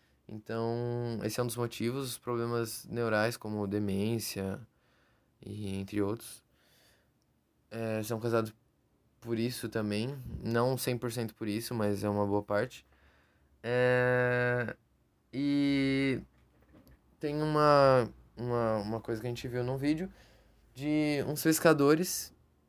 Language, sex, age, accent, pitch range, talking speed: Portuguese, male, 20-39, Brazilian, 110-140 Hz, 115 wpm